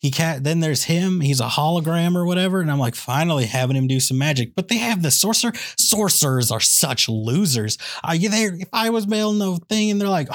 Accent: American